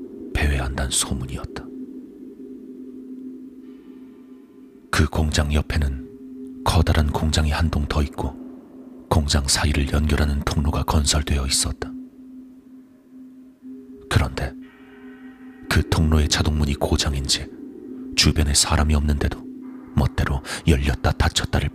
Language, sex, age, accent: Korean, male, 40-59, native